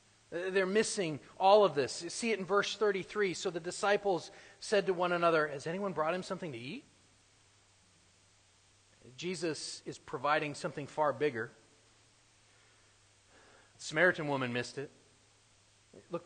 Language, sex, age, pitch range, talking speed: English, male, 40-59, 110-180 Hz, 130 wpm